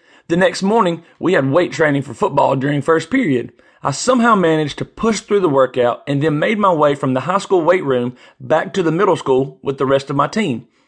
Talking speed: 230 wpm